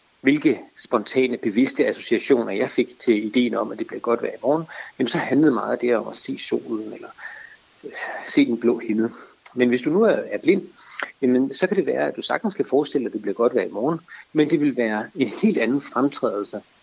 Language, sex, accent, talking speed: Danish, male, native, 220 wpm